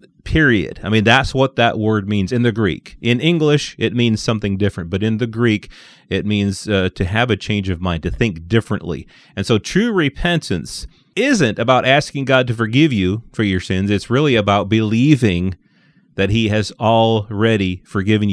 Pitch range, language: 100-130 Hz, English